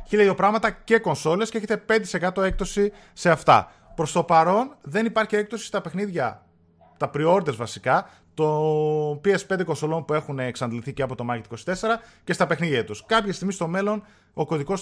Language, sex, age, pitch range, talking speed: Greek, male, 20-39, 125-185 Hz, 170 wpm